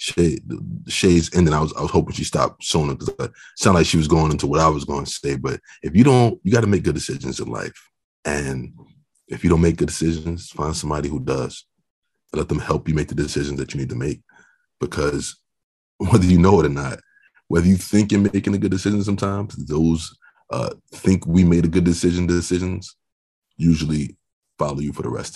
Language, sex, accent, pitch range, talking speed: English, male, American, 70-90 Hz, 215 wpm